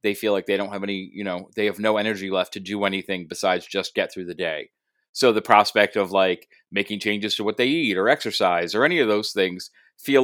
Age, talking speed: 30-49, 245 wpm